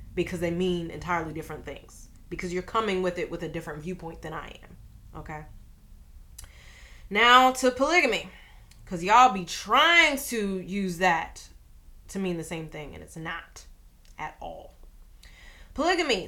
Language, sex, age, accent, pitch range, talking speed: English, female, 20-39, American, 180-235 Hz, 150 wpm